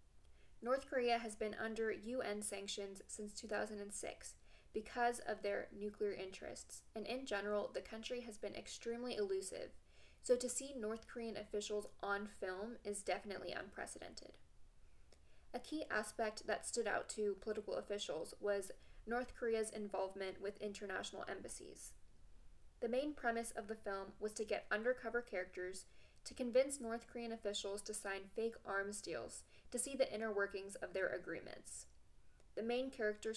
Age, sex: 10-29, female